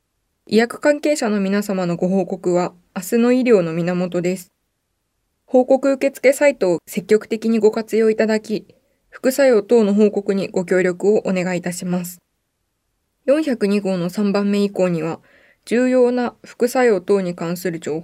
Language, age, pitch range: Japanese, 20-39, 185-235 Hz